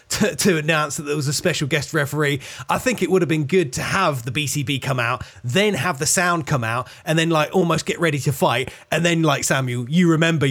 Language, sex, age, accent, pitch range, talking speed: English, male, 20-39, British, 140-165 Hz, 250 wpm